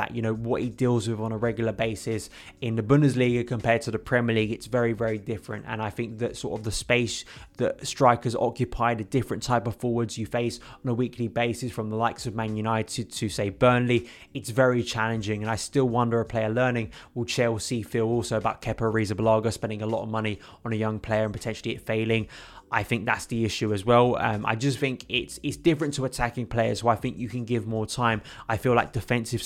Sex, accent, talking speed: male, British, 230 wpm